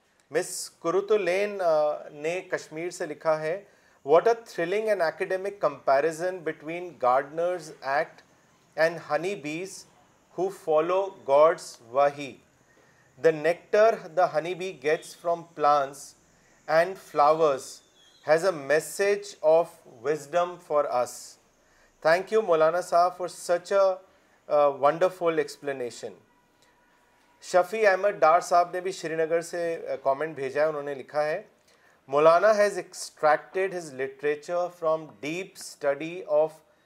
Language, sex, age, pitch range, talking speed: Urdu, male, 40-59, 150-185 Hz, 105 wpm